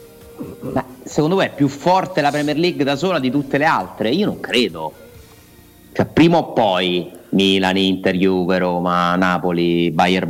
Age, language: 30-49, Italian